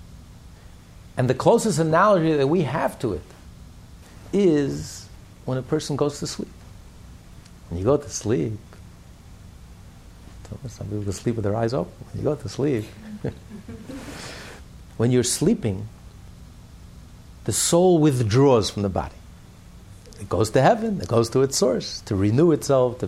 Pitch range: 100-155 Hz